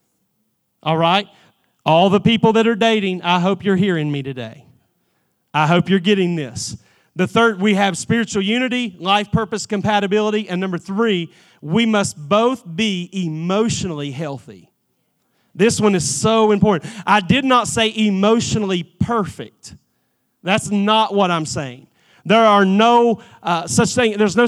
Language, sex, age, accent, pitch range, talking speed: English, male, 40-59, American, 175-215 Hz, 140 wpm